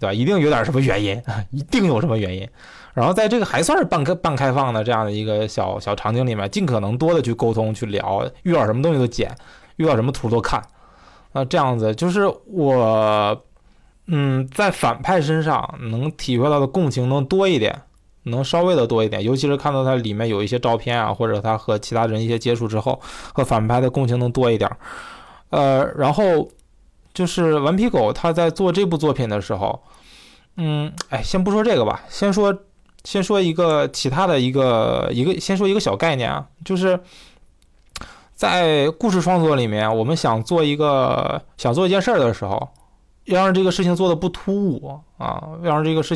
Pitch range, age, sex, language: 115-165 Hz, 20-39, male, Chinese